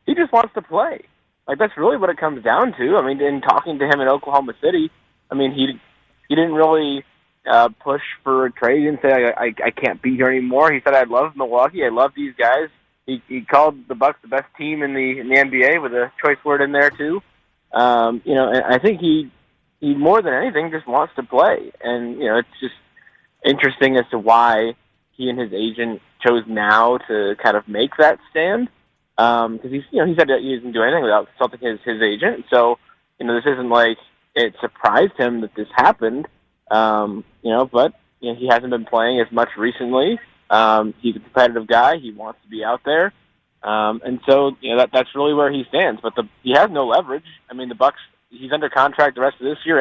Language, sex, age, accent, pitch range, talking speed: English, male, 20-39, American, 120-140 Hz, 225 wpm